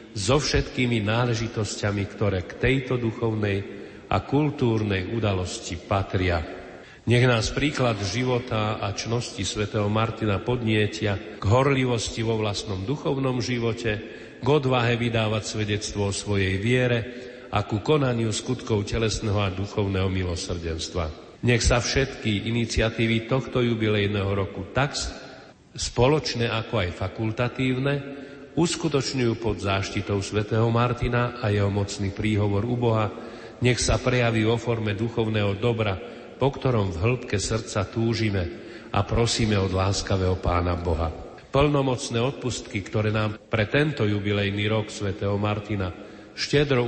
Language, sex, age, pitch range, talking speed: Slovak, male, 40-59, 100-120 Hz, 120 wpm